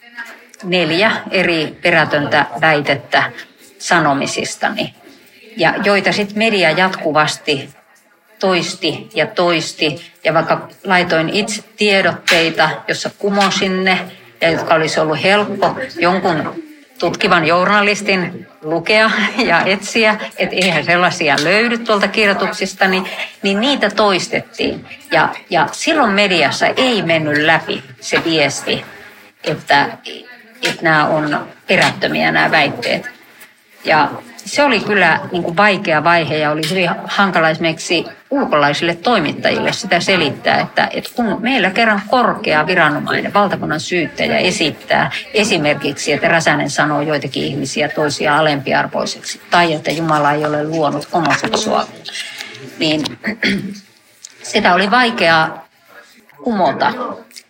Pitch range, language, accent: 160-210 Hz, Finnish, native